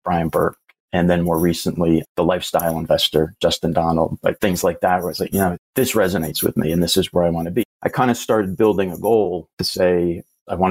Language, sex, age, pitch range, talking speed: English, male, 30-49, 85-100 Hz, 245 wpm